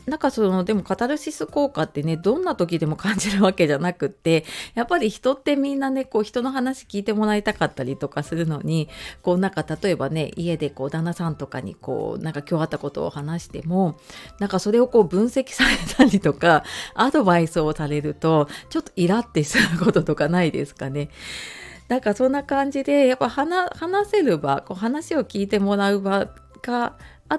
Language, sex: Japanese, female